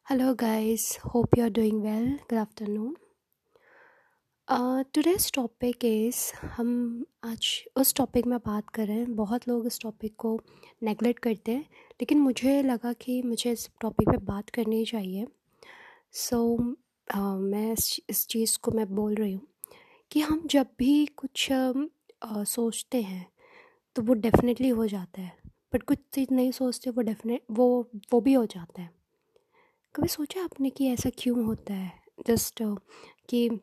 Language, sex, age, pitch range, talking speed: English, female, 20-39, 225-275 Hz, 140 wpm